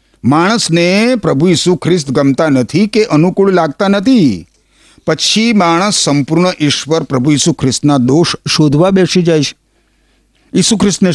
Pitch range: 100-165 Hz